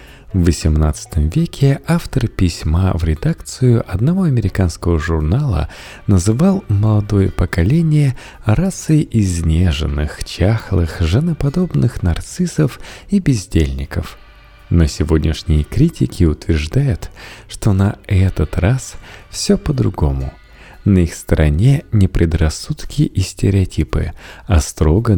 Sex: male